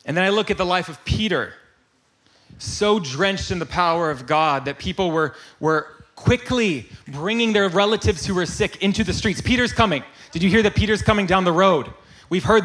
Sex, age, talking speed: male, 30-49, 205 wpm